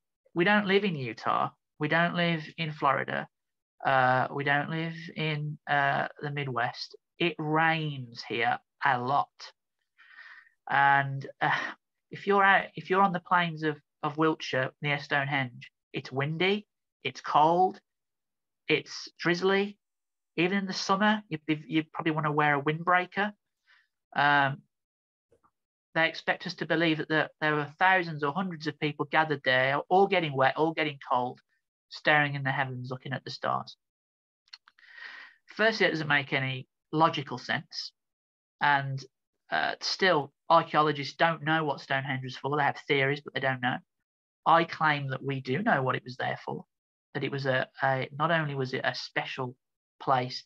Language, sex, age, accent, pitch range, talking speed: English, male, 30-49, British, 135-165 Hz, 155 wpm